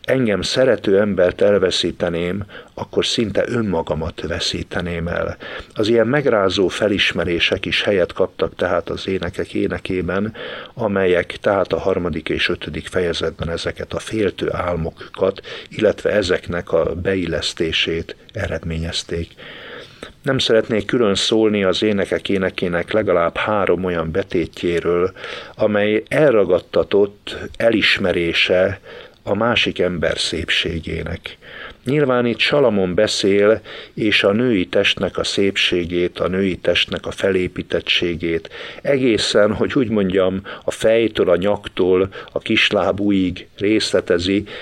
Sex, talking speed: male, 110 wpm